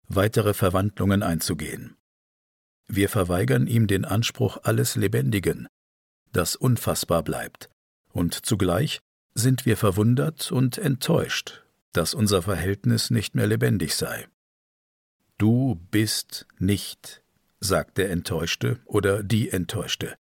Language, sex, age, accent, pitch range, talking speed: German, male, 50-69, German, 85-115 Hz, 105 wpm